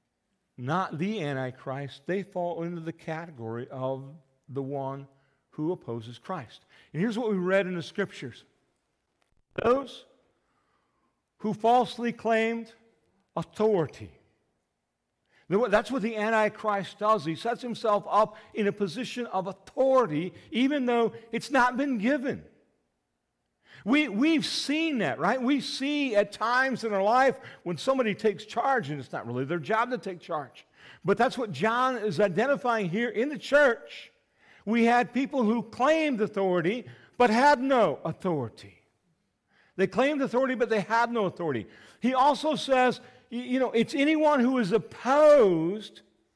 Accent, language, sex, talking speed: American, English, male, 140 wpm